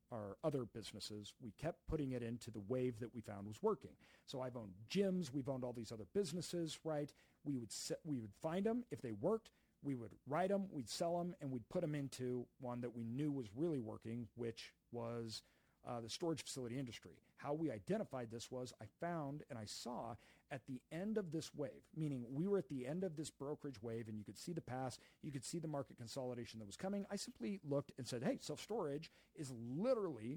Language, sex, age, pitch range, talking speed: English, male, 40-59, 115-155 Hz, 220 wpm